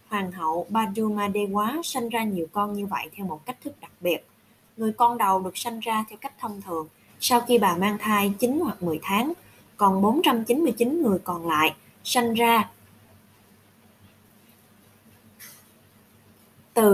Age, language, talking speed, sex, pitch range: 20-39, Vietnamese, 150 wpm, female, 175-245 Hz